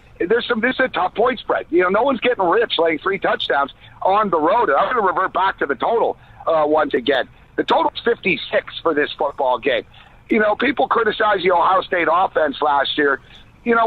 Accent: American